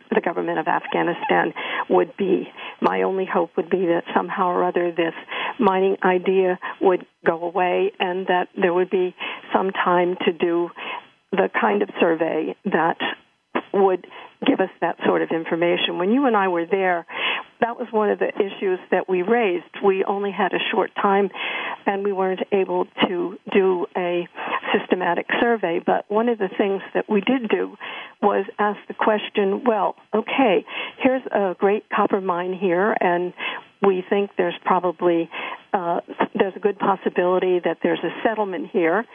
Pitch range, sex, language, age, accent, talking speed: 180-220 Hz, female, English, 50-69, American, 165 wpm